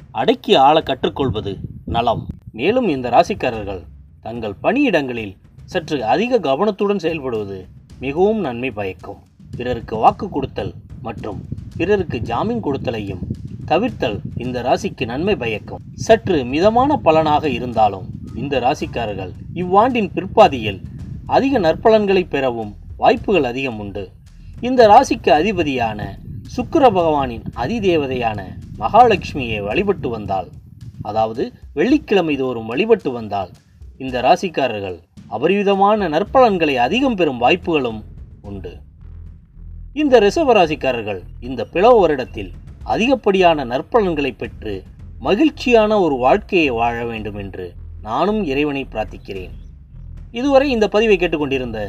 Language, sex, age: Tamil, male, 20-39